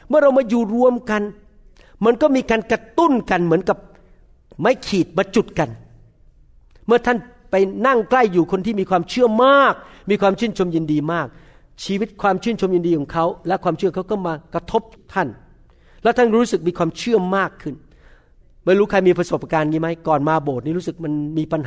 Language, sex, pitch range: Thai, male, 155-220 Hz